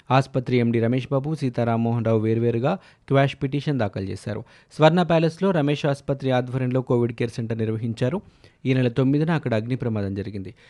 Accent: native